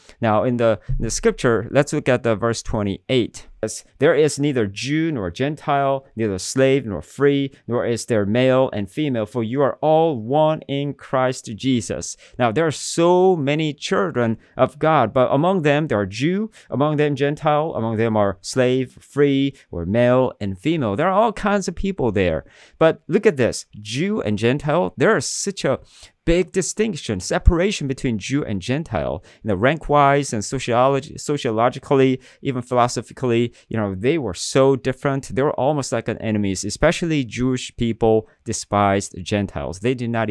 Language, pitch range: English, 110-145 Hz